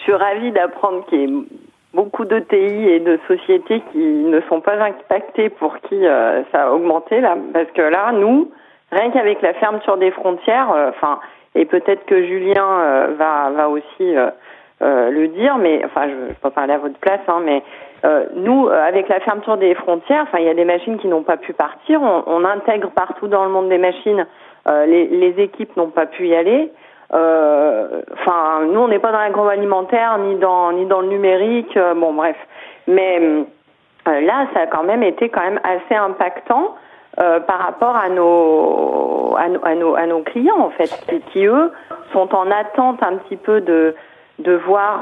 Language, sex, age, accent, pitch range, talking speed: French, female, 40-59, French, 170-225 Hz, 190 wpm